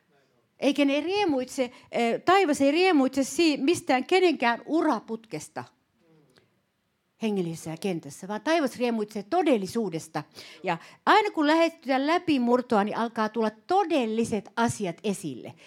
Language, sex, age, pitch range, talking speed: Finnish, female, 60-79, 195-275 Hz, 105 wpm